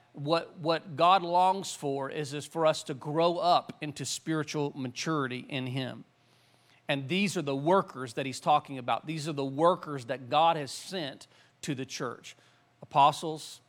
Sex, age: male, 40-59